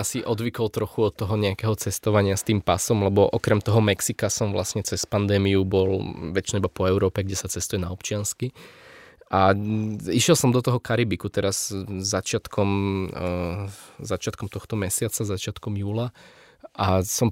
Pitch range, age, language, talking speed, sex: 100-120 Hz, 20-39, Slovak, 150 wpm, male